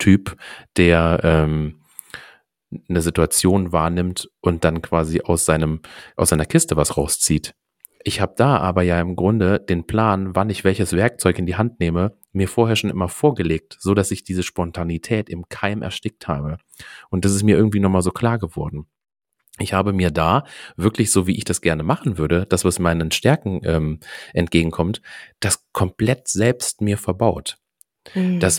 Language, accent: German, German